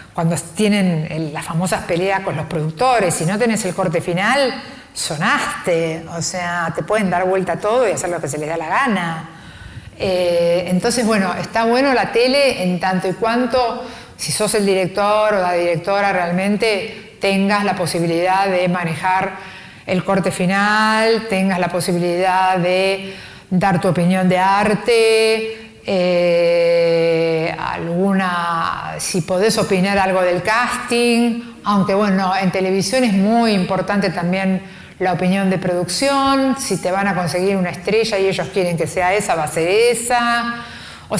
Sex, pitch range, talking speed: female, 175-220 Hz, 155 wpm